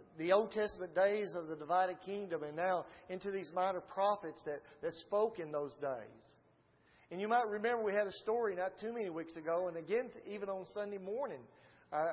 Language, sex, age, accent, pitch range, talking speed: English, male, 40-59, American, 165-210 Hz, 200 wpm